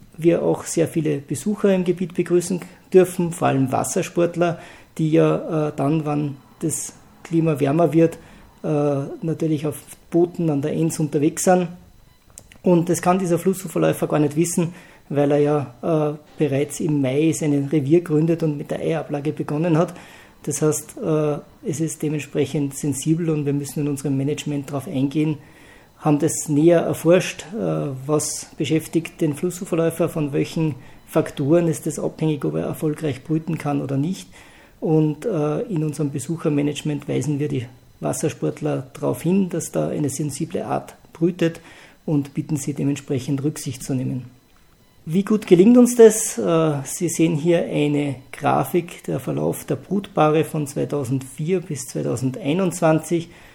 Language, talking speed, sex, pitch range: German, 145 wpm, male, 145-170 Hz